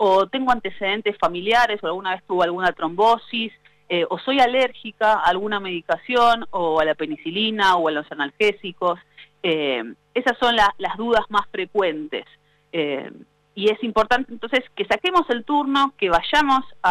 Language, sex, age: Spanish, female, 30-49